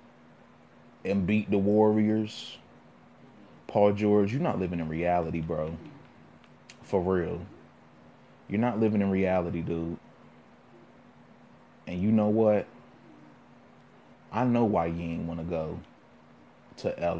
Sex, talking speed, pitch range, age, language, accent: male, 120 wpm, 80-105 Hz, 30-49, English, American